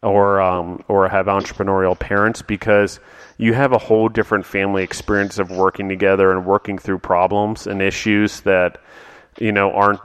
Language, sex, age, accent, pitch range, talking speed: English, male, 30-49, American, 95-100 Hz, 160 wpm